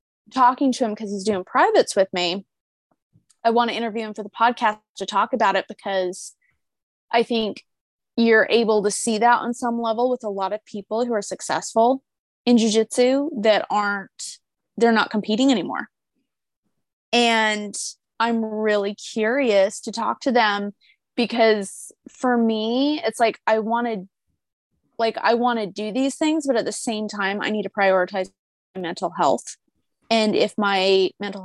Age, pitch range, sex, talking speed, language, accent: 20-39, 200-235 Hz, female, 165 wpm, English, American